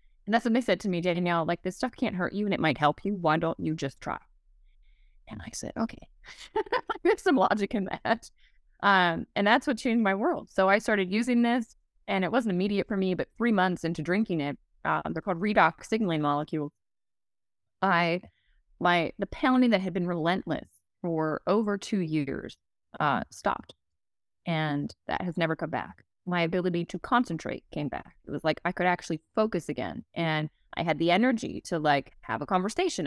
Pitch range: 160-215 Hz